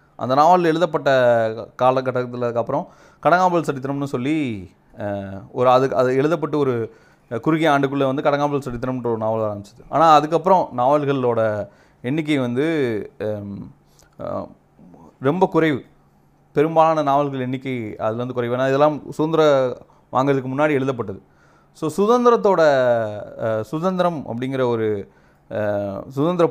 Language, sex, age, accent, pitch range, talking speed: Tamil, male, 30-49, native, 110-150 Hz, 100 wpm